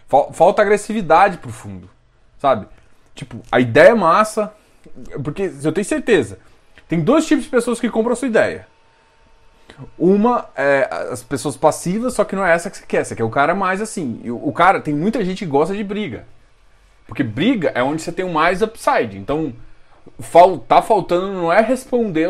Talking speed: 180 wpm